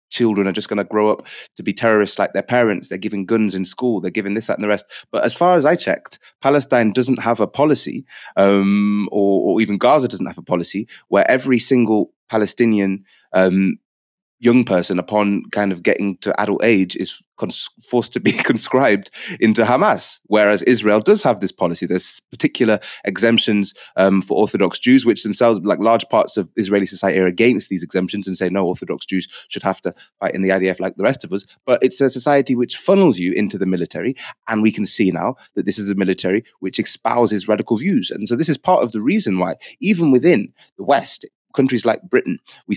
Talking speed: 210 wpm